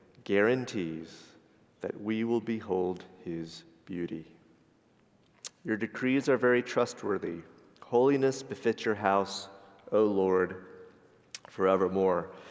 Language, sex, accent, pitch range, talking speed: English, male, American, 105-130 Hz, 90 wpm